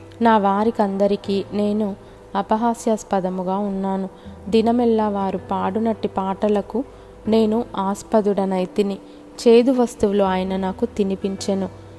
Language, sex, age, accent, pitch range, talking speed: Telugu, female, 20-39, native, 190-220 Hz, 80 wpm